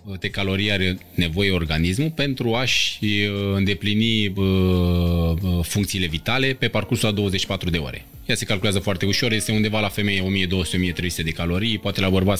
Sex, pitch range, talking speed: male, 85-115 Hz, 150 wpm